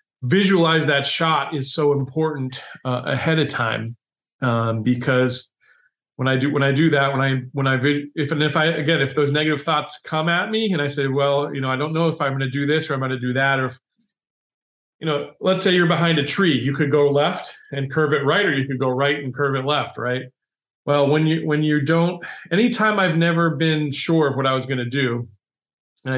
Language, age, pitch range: English, 40-59, 130-155 Hz